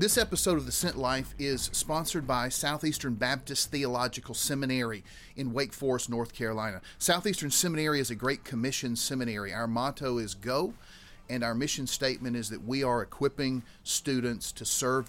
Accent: American